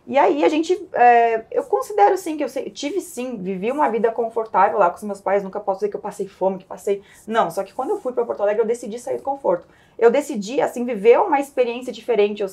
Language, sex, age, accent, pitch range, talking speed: Portuguese, female, 20-39, Brazilian, 200-270 Hz, 250 wpm